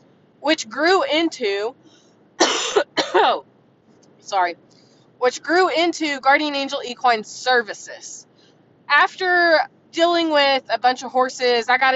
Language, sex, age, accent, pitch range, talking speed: English, female, 20-39, American, 215-285 Hz, 105 wpm